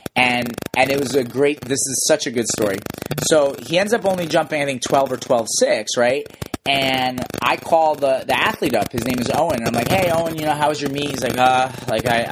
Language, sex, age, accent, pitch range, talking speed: English, male, 30-49, American, 125-155 Hz, 260 wpm